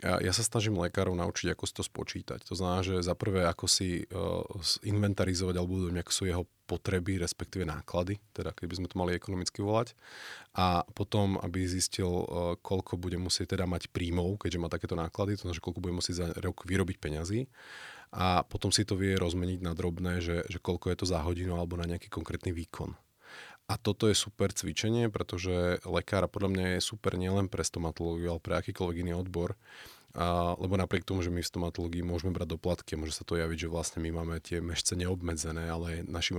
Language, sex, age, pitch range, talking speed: Slovak, male, 30-49, 85-95 Hz, 195 wpm